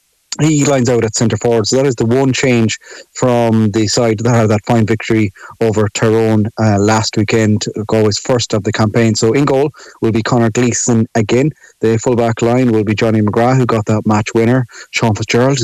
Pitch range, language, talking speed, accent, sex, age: 110-130 Hz, English, 205 wpm, Irish, male, 30-49